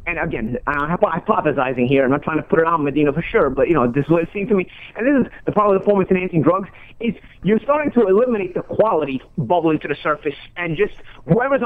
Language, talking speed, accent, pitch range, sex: English, 240 wpm, American, 145-190 Hz, male